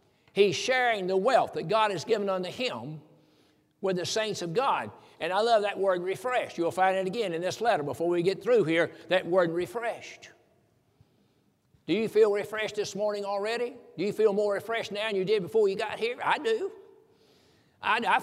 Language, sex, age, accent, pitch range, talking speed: English, male, 60-79, American, 165-215 Hz, 200 wpm